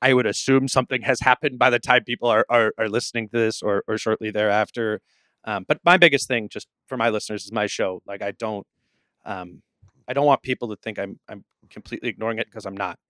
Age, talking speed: 30-49, 230 wpm